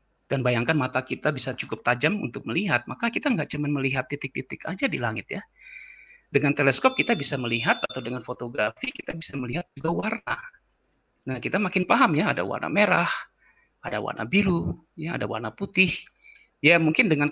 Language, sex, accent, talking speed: Indonesian, male, native, 175 wpm